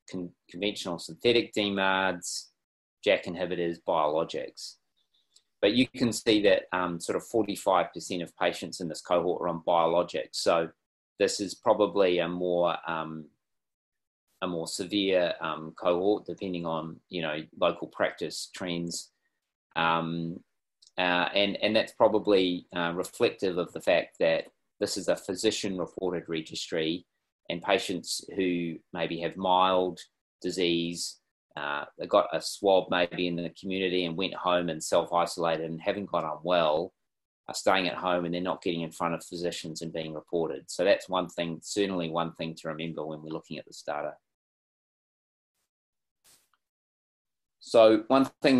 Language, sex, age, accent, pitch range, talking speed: English, male, 30-49, Australian, 80-95 Hz, 150 wpm